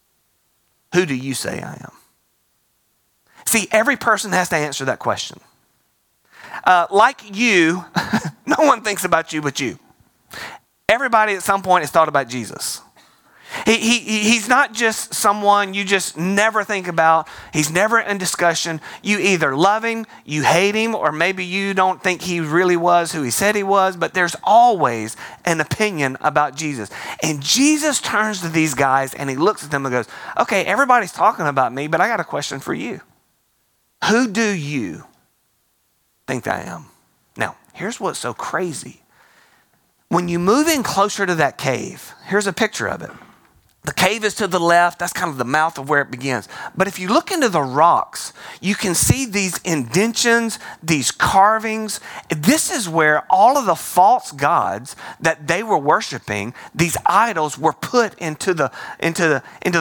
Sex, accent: male, American